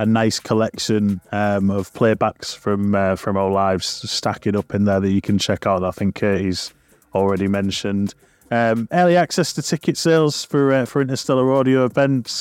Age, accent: 30-49, British